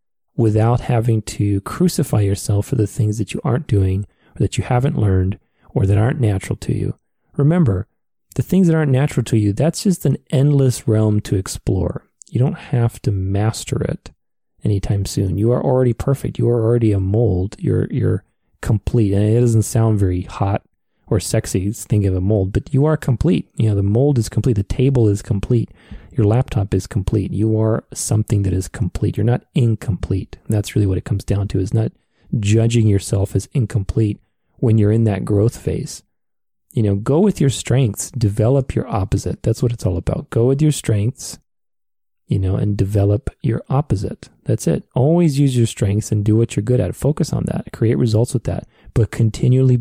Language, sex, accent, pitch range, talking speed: English, male, American, 100-125 Hz, 195 wpm